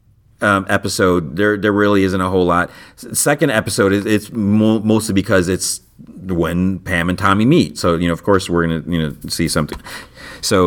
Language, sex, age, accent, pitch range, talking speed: English, male, 40-59, American, 85-105 Hz, 185 wpm